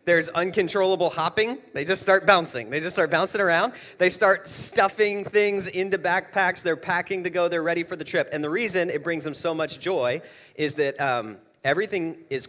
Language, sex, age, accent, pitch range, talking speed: English, male, 30-49, American, 140-195 Hz, 195 wpm